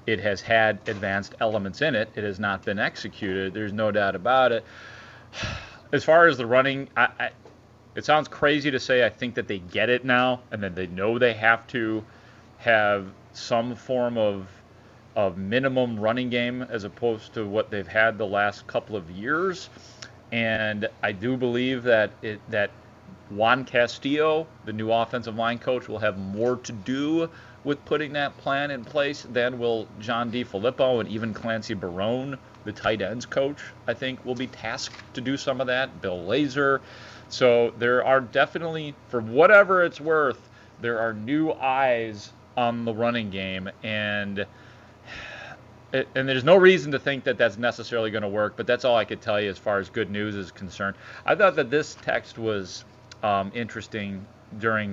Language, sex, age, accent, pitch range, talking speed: English, male, 30-49, American, 105-125 Hz, 180 wpm